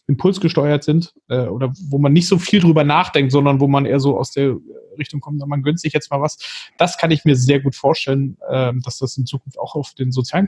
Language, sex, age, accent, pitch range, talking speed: German, male, 30-49, German, 140-170 Hz, 240 wpm